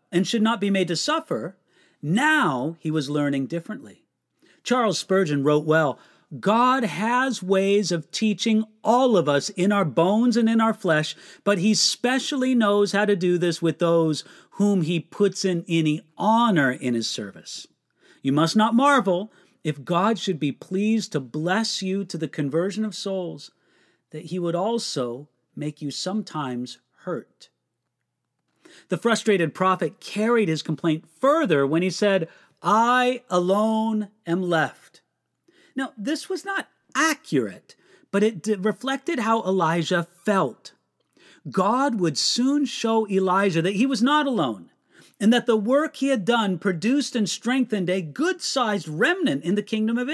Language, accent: English, American